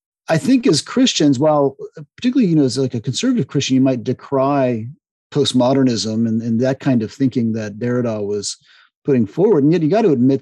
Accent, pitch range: American, 120-145 Hz